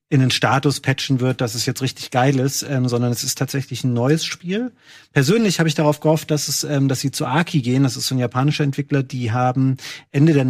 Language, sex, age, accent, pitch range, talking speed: German, male, 30-49, German, 130-150 Hz, 240 wpm